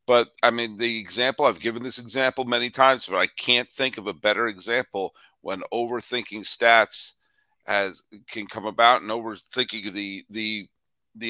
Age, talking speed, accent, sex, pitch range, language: 50-69, 165 wpm, American, male, 110-145 Hz, English